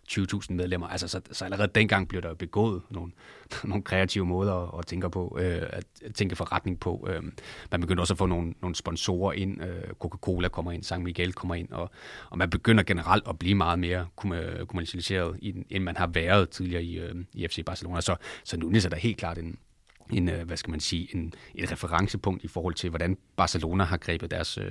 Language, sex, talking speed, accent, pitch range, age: Danish, male, 195 wpm, native, 90-100 Hz, 30-49